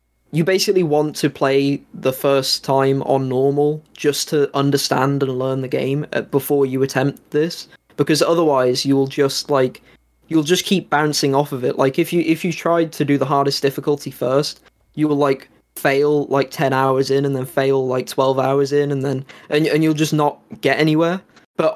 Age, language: 20-39, English